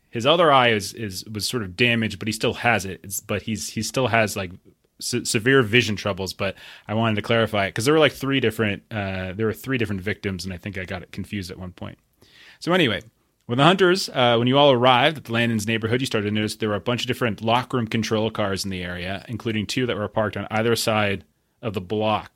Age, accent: 30-49, American